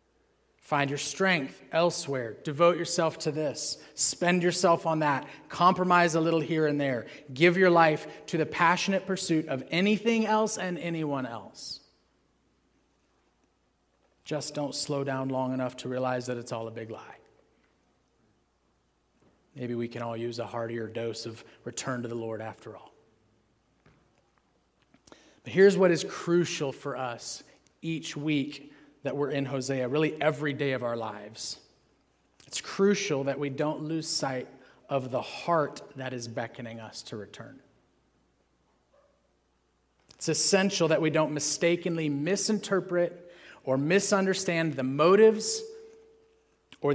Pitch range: 125-165 Hz